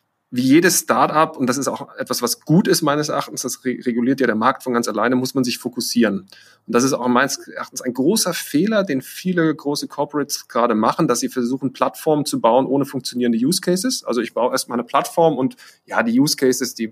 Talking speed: 220 wpm